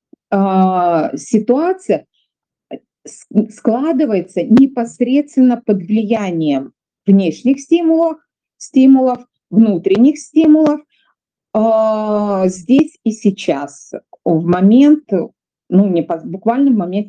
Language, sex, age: Russian, female, 30-49